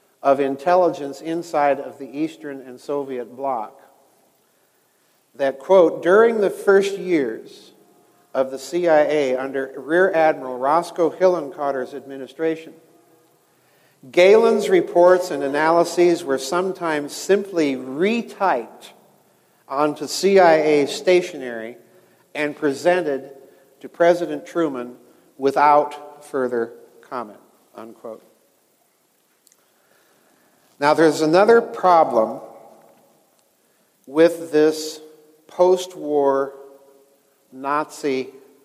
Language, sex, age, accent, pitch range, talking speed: English, male, 50-69, American, 135-170 Hz, 80 wpm